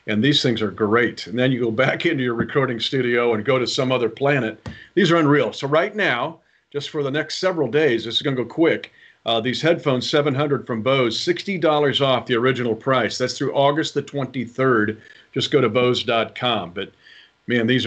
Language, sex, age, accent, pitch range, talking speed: English, male, 50-69, American, 120-150 Hz, 210 wpm